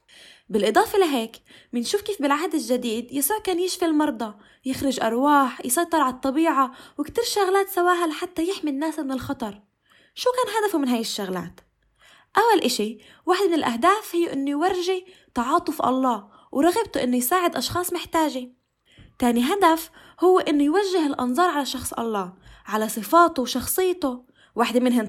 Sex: female